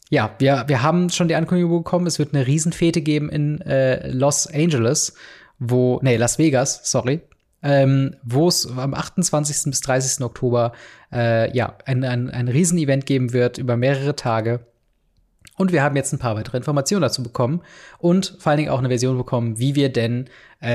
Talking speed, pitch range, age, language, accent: 180 wpm, 120-150 Hz, 20-39, German, German